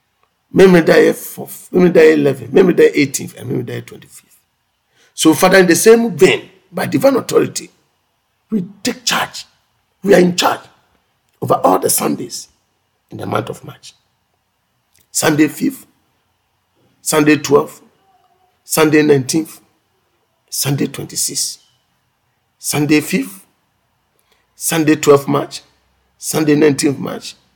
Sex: male